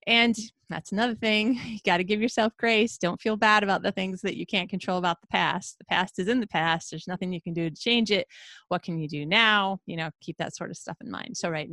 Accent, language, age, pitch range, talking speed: American, English, 30-49, 175-220 Hz, 270 wpm